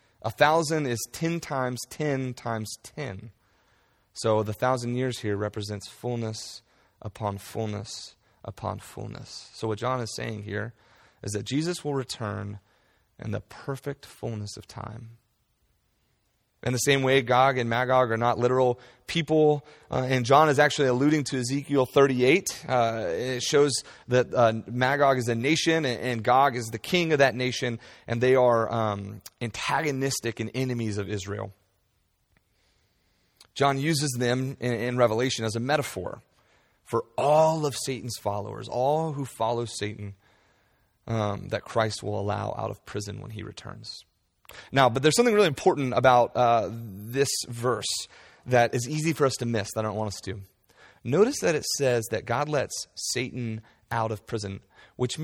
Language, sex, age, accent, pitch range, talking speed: English, male, 30-49, American, 105-135 Hz, 160 wpm